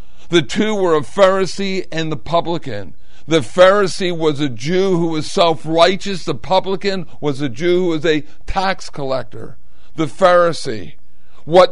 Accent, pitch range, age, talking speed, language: American, 150-180 Hz, 50-69, 150 wpm, English